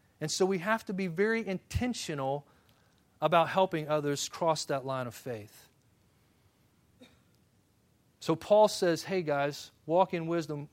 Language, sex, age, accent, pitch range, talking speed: English, male, 40-59, American, 145-195 Hz, 135 wpm